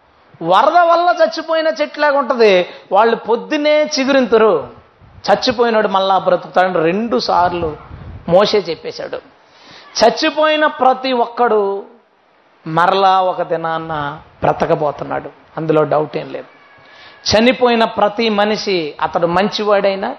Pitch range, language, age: 180-260 Hz, Telugu, 30-49